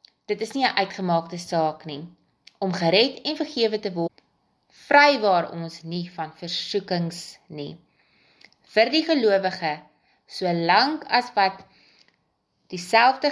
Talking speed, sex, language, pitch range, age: 120 wpm, female, English, 165-215 Hz, 30-49